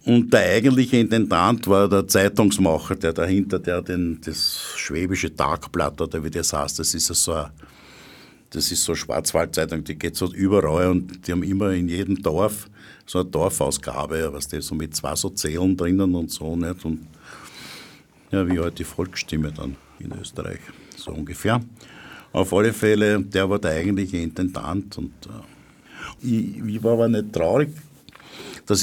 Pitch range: 85-105 Hz